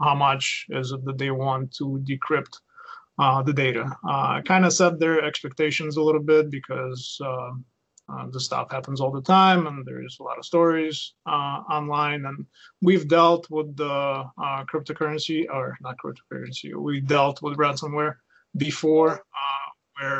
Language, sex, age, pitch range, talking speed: English, male, 30-49, 135-160 Hz, 160 wpm